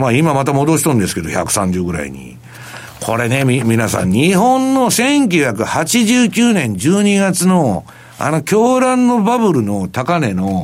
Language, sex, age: Japanese, male, 60-79